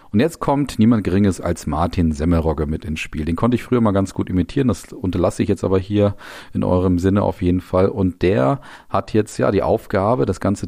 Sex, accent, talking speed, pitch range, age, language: male, German, 225 wpm, 85-100 Hz, 40-59, German